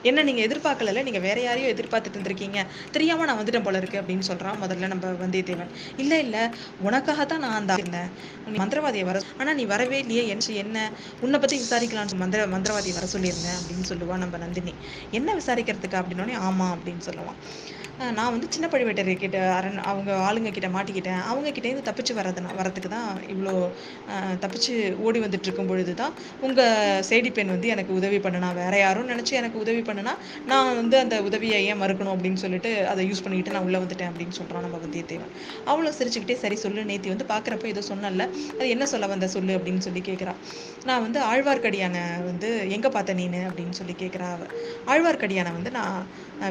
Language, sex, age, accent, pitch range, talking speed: Tamil, female, 20-39, native, 185-235 Hz, 150 wpm